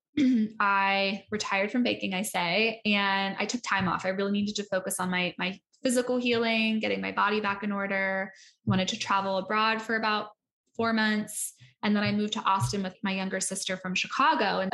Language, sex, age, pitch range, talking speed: English, female, 10-29, 190-220 Hz, 200 wpm